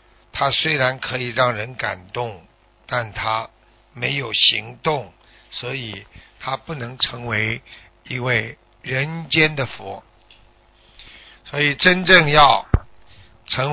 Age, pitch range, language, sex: 60-79, 110-145 Hz, Chinese, male